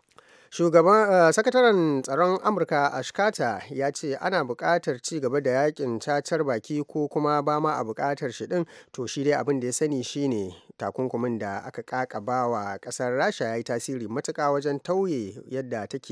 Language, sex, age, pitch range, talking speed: English, male, 30-49, 115-150 Hz, 130 wpm